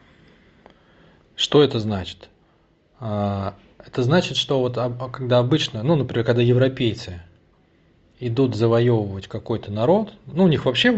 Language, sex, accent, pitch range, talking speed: Russian, male, native, 110-140 Hz, 115 wpm